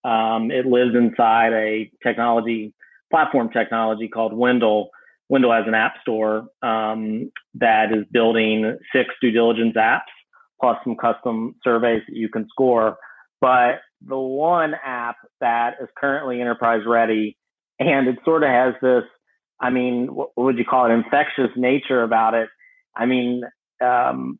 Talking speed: 150 wpm